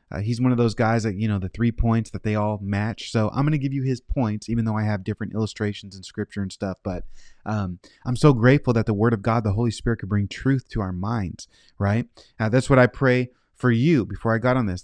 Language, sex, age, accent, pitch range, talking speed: English, male, 30-49, American, 105-125 Hz, 265 wpm